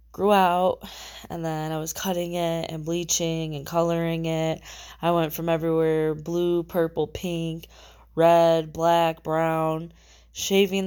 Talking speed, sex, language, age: 130 wpm, female, English, 20-39